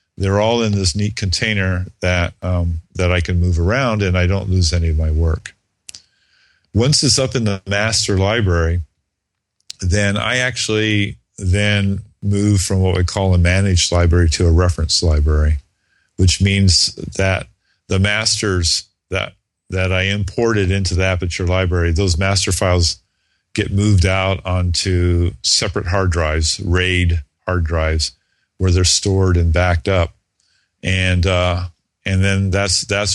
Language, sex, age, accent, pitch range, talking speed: English, male, 50-69, American, 90-100 Hz, 150 wpm